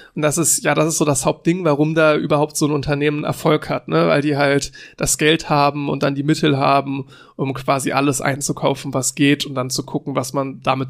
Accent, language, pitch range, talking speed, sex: German, German, 140-165 Hz, 230 wpm, male